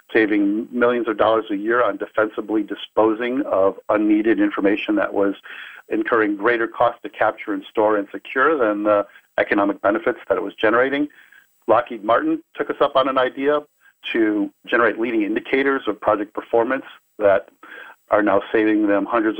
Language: English